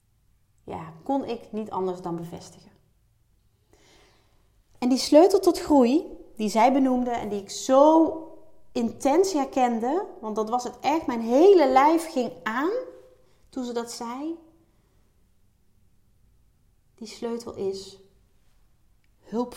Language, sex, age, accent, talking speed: Dutch, female, 30-49, Dutch, 120 wpm